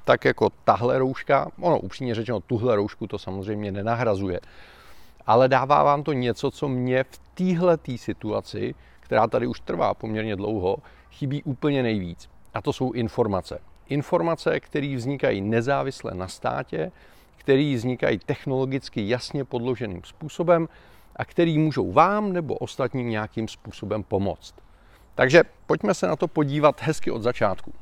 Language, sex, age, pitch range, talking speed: Czech, male, 40-59, 110-145 Hz, 140 wpm